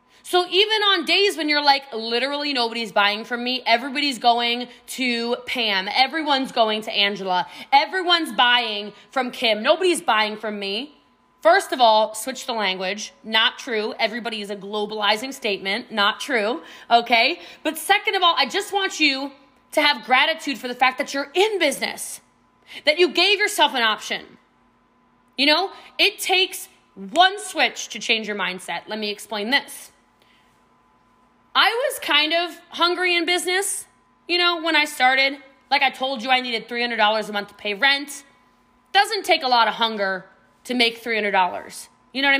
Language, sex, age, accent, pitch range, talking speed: English, female, 20-39, American, 215-300 Hz, 165 wpm